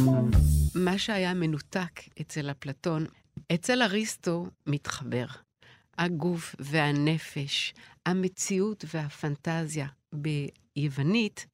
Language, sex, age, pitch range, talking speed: Hebrew, female, 50-69, 145-190 Hz, 70 wpm